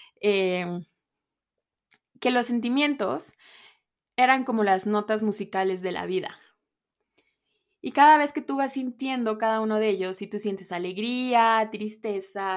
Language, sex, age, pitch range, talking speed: Spanish, female, 20-39, 205-240 Hz, 135 wpm